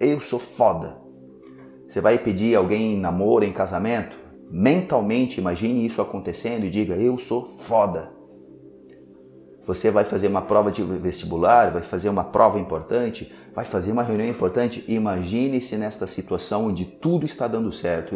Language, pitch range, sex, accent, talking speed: Portuguese, 65-110 Hz, male, Brazilian, 150 wpm